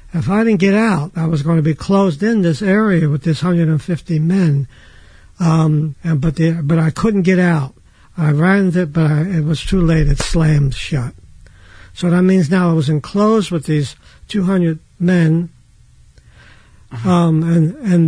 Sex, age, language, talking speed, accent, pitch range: male, 60-79, English, 185 wpm, American, 150-185 Hz